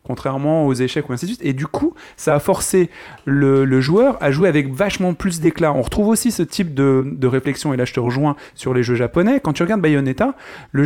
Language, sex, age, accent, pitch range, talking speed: French, male, 30-49, French, 135-180 Hz, 245 wpm